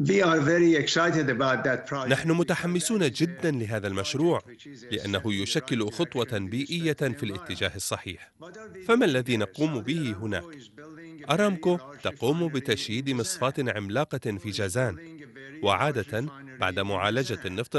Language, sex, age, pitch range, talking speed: Arabic, male, 40-59, 110-155 Hz, 95 wpm